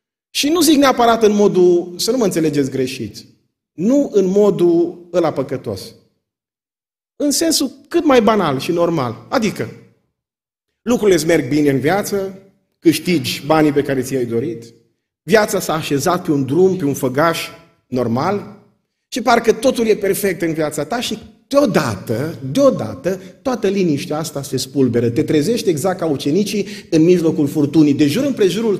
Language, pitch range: Romanian, 175-255 Hz